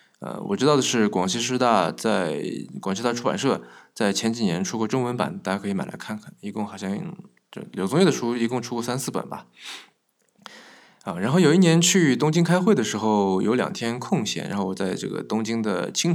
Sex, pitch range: male, 105-140 Hz